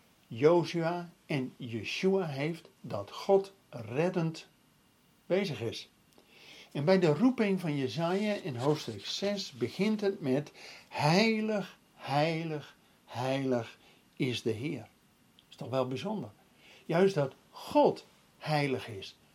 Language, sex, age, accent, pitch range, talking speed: Dutch, male, 60-79, Dutch, 135-195 Hz, 115 wpm